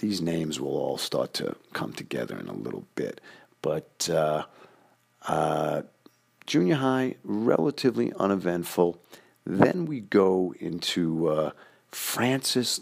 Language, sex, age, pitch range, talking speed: English, male, 50-69, 75-95 Hz, 115 wpm